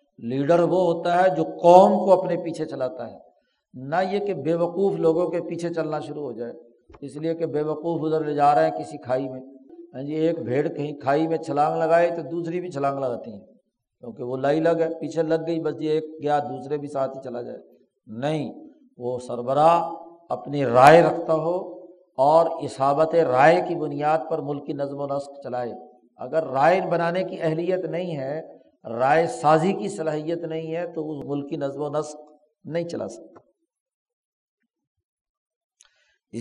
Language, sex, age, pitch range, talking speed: Urdu, male, 50-69, 145-170 Hz, 180 wpm